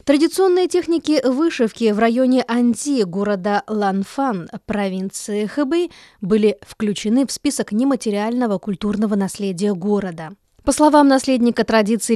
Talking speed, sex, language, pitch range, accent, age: 110 wpm, female, Russian, 200-260 Hz, native, 20-39